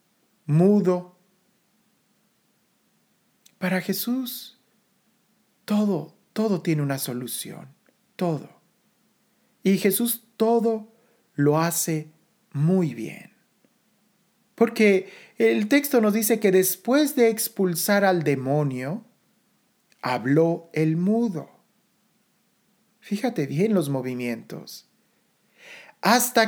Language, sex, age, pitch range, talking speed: Spanish, male, 40-59, 165-215 Hz, 80 wpm